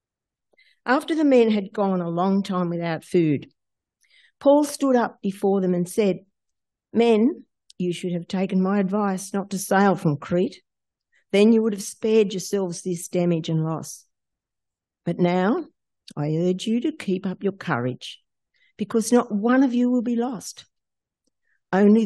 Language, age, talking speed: English, 50-69, 160 wpm